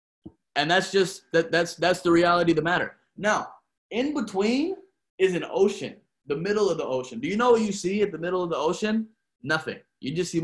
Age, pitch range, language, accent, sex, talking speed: 20-39, 140-200 Hz, English, American, male, 220 wpm